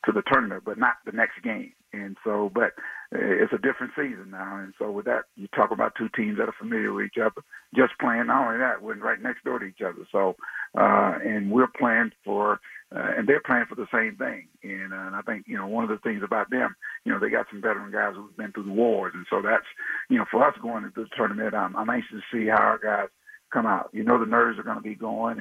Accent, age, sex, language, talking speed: American, 50-69, male, English, 265 wpm